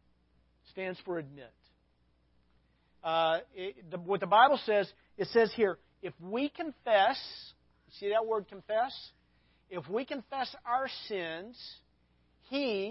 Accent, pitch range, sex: American, 130-215 Hz, male